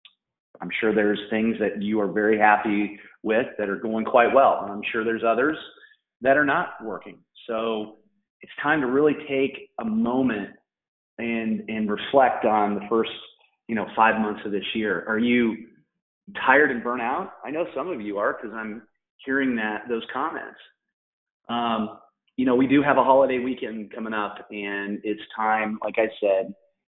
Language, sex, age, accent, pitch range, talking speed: English, male, 30-49, American, 100-115 Hz, 180 wpm